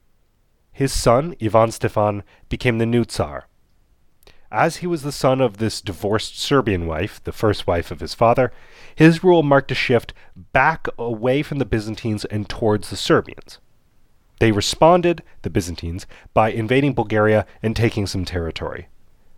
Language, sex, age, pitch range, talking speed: English, male, 30-49, 95-125 Hz, 150 wpm